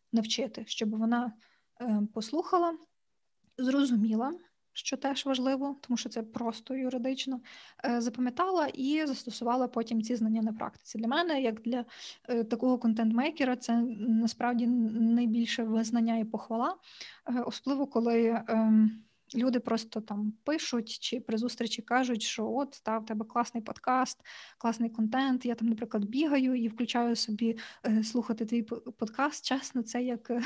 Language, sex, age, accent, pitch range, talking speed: Ukrainian, female, 20-39, native, 230-260 Hz, 130 wpm